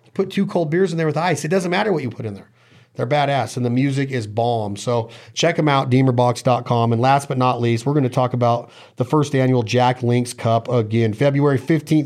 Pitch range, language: 130-155 Hz, English